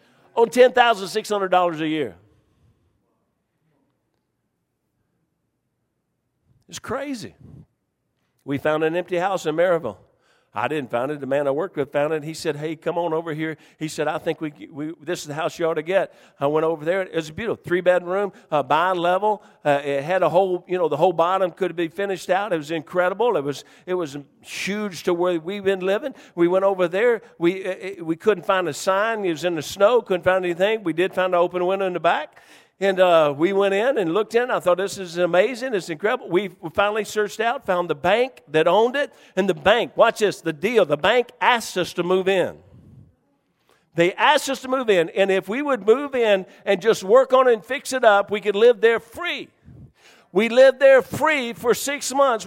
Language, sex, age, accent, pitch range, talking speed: English, male, 50-69, American, 170-250 Hz, 210 wpm